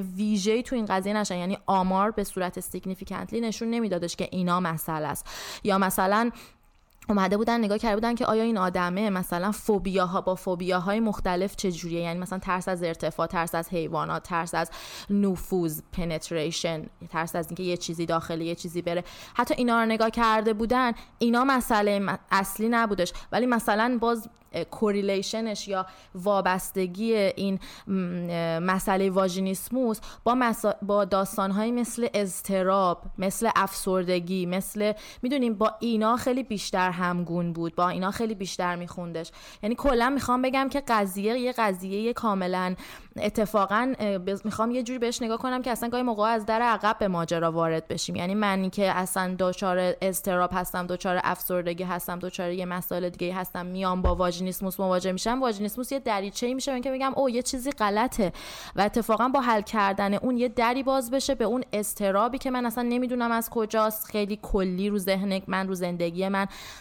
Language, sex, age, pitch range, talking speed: Persian, female, 20-39, 180-225 Hz, 165 wpm